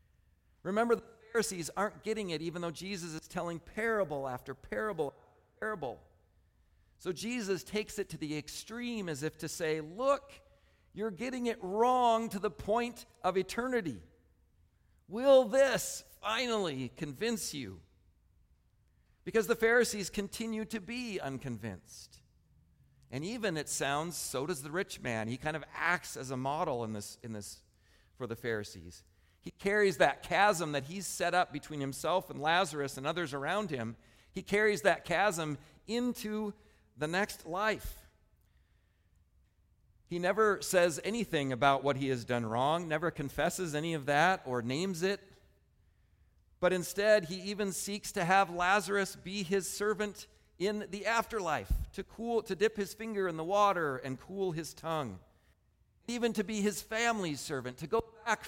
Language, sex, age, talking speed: English, male, 50-69, 155 wpm